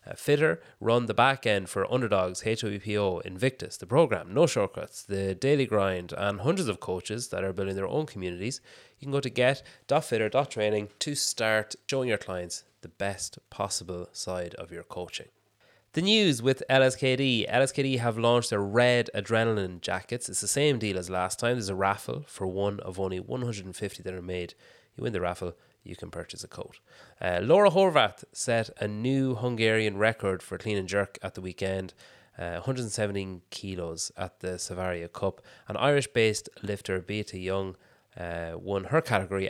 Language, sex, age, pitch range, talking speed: English, male, 30-49, 95-120 Hz, 170 wpm